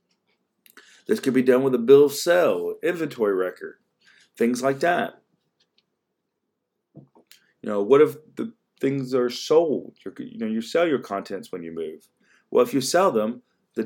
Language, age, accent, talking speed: English, 40-59, American, 165 wpm